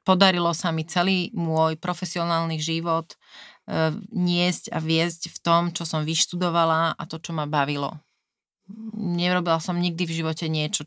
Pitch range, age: 155-175 Hz, 30-49